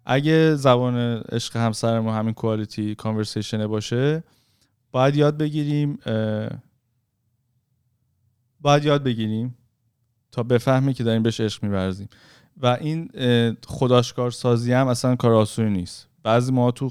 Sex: male